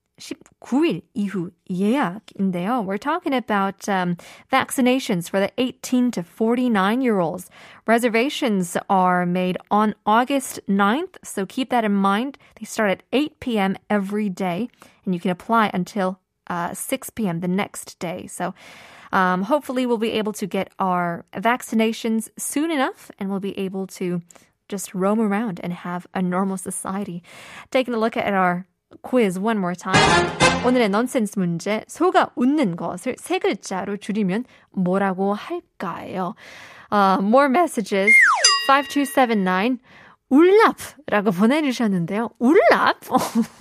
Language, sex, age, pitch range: Korean, female, 20-39, 195-270 Hz